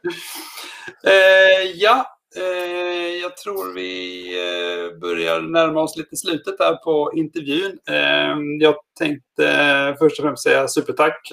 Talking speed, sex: 125 wpm, male